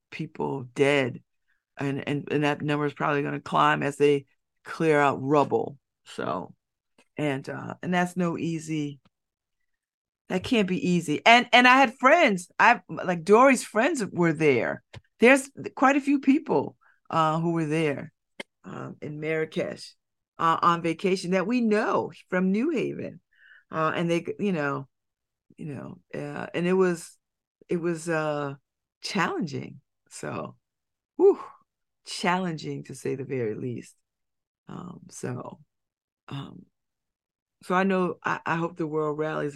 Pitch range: 140-185 Hz